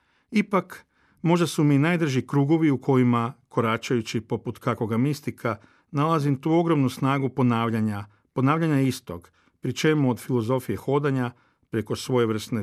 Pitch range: 115-150 Hz